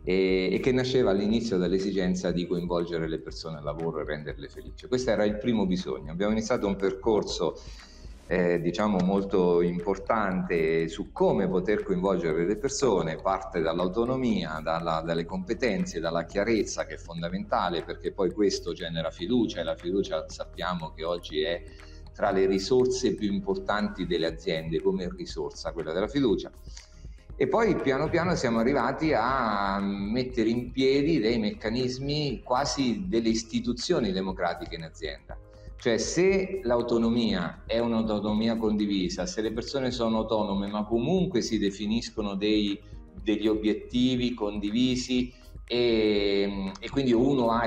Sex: male